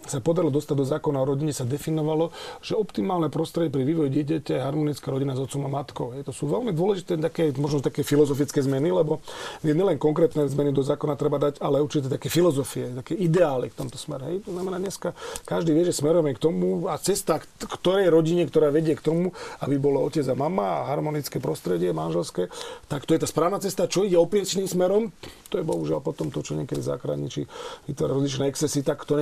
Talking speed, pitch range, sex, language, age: 205 wpm, 140-165 Hz, male, Slovak, 40-59